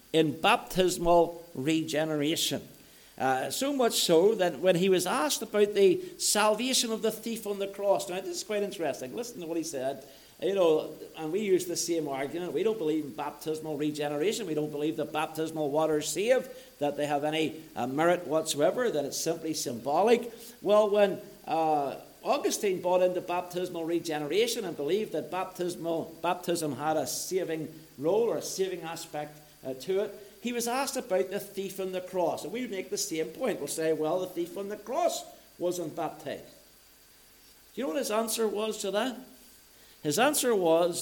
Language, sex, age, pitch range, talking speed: English, male, 60-79, 155-210 Hz, 180 wpm